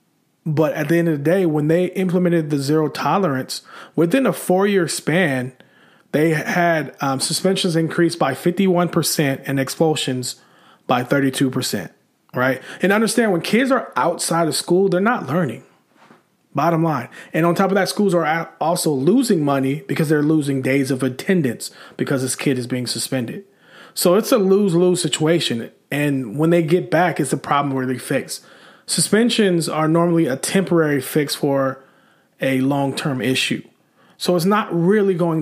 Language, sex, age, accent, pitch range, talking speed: English, male, 30-49, American, 140-180 Hz, 170 wpm